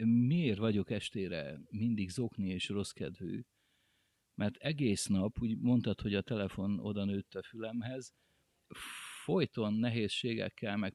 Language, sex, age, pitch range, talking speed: Hungarian, male, 50-69, 105-135 Hz, 120 wpm